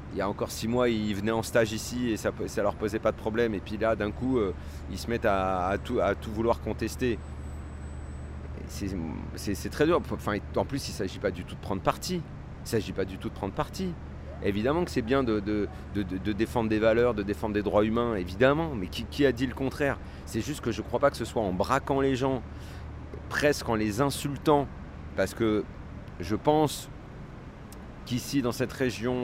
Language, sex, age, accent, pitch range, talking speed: French, male, 40-59, French, 95-125 Hz, 215 wpm